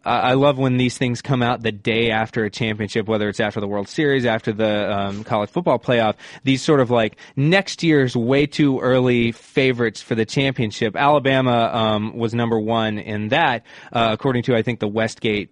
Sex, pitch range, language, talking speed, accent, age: male, 115-150 Hz, English, 195 wpm, American, 20-39